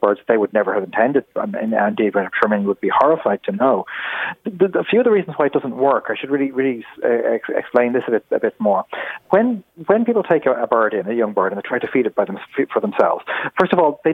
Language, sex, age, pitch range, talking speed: English, male, 30-49, 115-165 Hz, 260 wpm